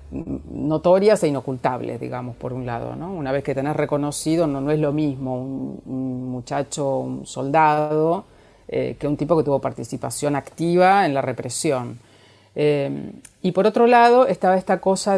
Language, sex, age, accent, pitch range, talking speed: Spanish, female, 40-59, Argentinian, 135-170 Hz, 165 wpm